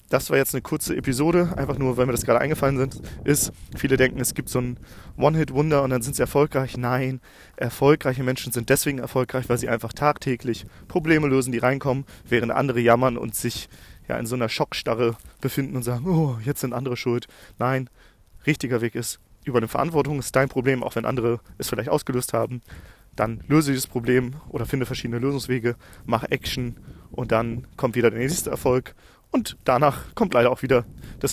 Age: 40-59